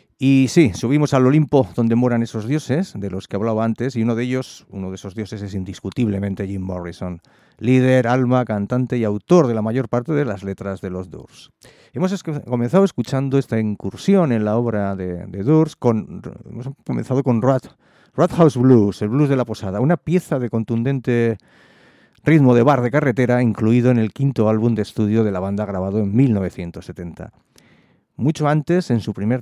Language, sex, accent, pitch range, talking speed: English, male, Spanish, 100-130 Hz, 185 wpm